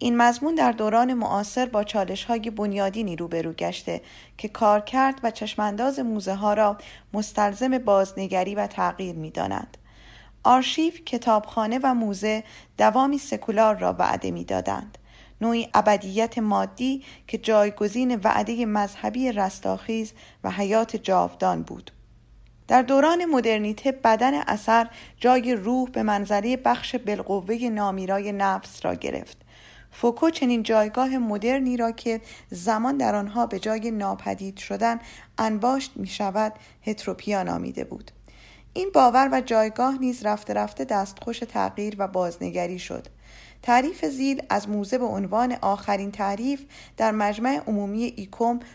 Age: 40-59